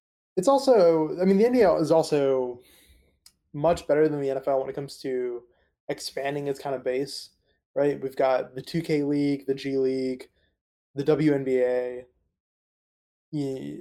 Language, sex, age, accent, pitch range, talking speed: English, male, 20-39, American, 125-145 Hz, 150 wpm